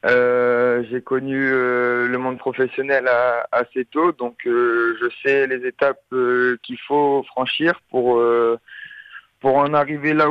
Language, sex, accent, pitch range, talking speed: French, male, French, 120-140 Hz, 140 wpm